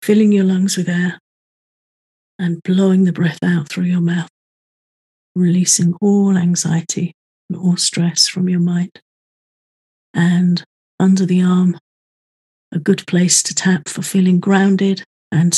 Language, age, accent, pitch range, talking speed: English, 40-59, British, 175-200 Hz, 135 wpm